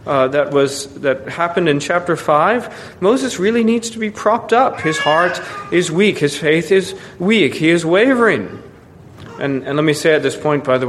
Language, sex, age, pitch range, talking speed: English, male, 40-59, 130-180 Hz, 200 wpm